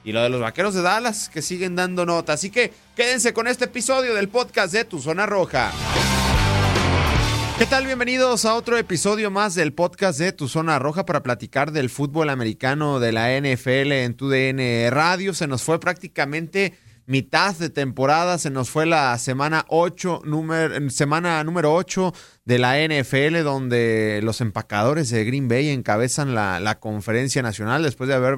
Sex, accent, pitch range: male, Mexican, 125-160 Hz